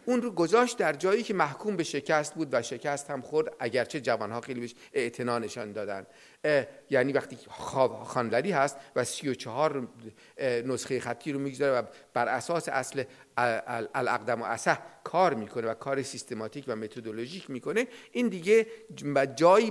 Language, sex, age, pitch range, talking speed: Persian, male, 50-69, 125-190 Hz, 160 wpm